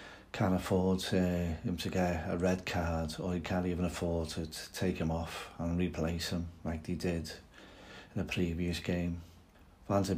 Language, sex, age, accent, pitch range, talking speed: English, male, 40-59, British, 85-95 Hz, 185 wpm